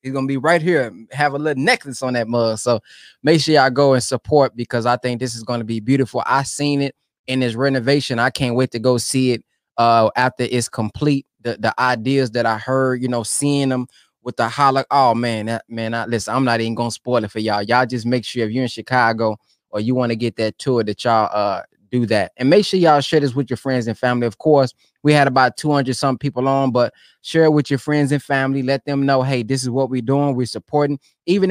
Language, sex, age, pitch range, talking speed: English, male, 20-39, 125-165 Hz, 255 wpm